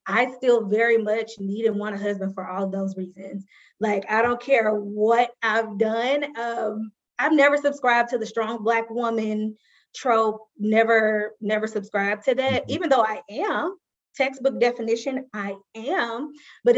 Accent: American